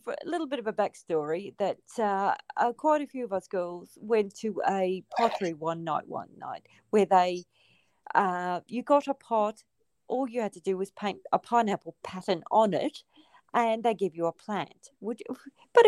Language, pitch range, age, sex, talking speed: English, 185-280 Hz, 40-59, female, 195 wpm